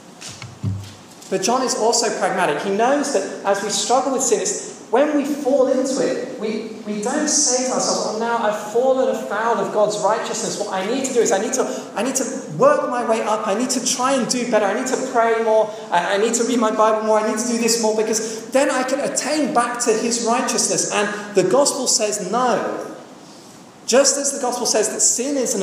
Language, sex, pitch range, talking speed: English, male, 185-255 Hz, 225 wpm